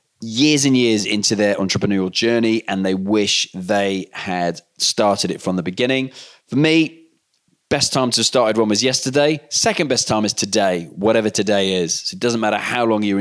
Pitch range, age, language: 95-115 Hz, 20-39, English